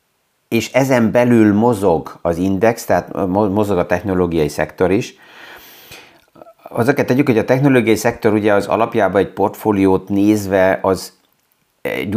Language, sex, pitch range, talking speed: Hungarian, male, 90-105 Hz, 130 wpm